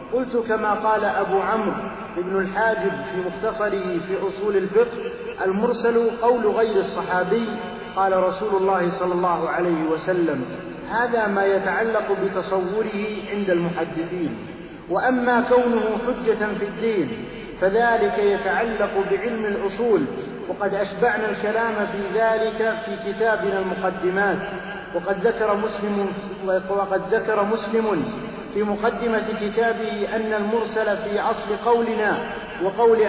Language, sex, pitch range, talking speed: Arabic, male, 195-225 Hz, 110 wpm